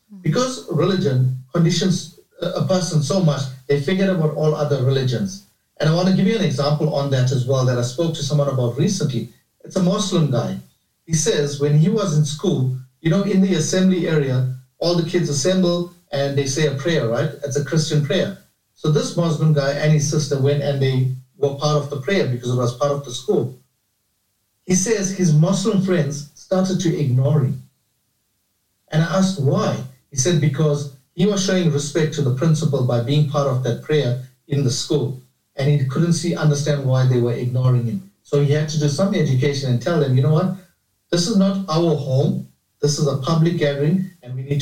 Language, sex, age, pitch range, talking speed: English, male, 50-69, 130-170 Hz, 205 wpm